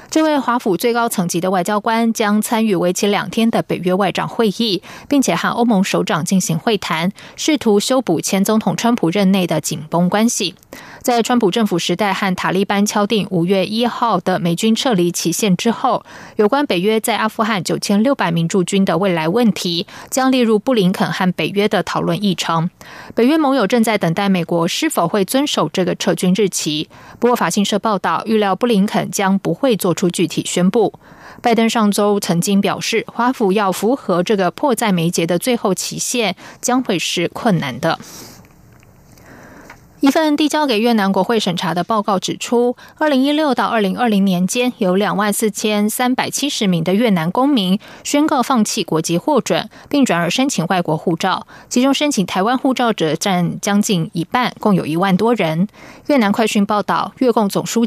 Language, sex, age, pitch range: Chinese, female, 20-39, 180-235 Hz